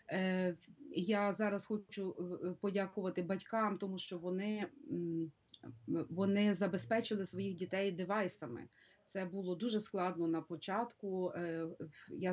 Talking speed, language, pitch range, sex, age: 95 wpm, Ukrainian, 175-205 Hz, female, 30-49